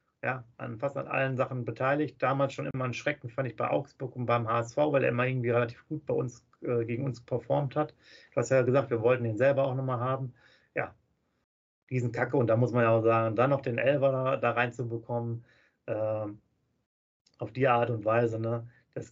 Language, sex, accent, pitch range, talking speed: German, male, German, 115-130 Hz, 215 wpm